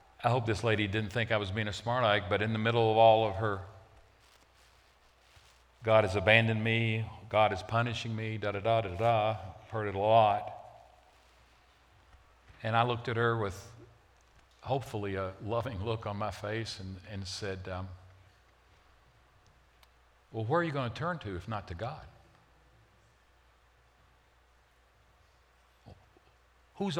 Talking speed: 150 wpm